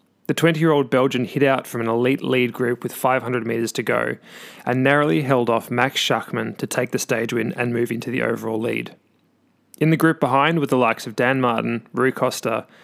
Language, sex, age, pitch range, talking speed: English, male, 20-39, 120-140 Hz, 205 wpm